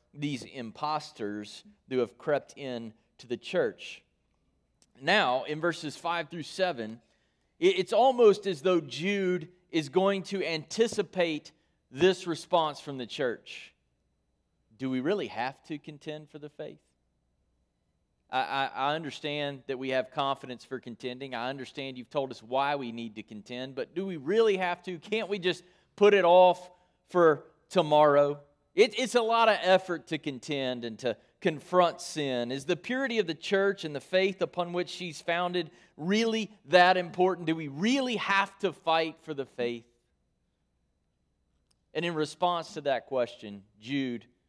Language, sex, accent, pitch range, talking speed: English, male, American, 120-175 Hz, 155 wpm